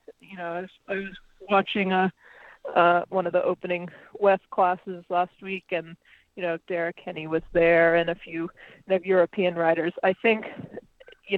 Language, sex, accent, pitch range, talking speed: English, female, American, 165-195 Hz, 180 wpm